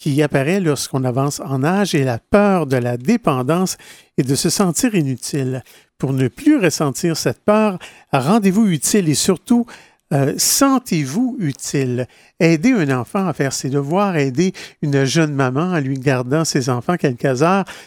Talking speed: 160 wpm